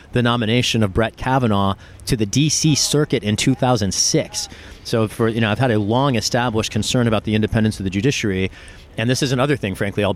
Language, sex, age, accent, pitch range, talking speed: English, male, 30-49, American, 95-115 Hz, 200 wpm